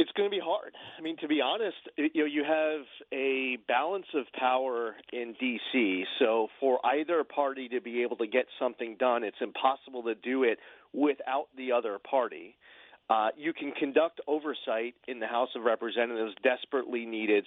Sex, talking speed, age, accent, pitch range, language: male, 180 wpm, 40-59, American, 125-170 Hz, English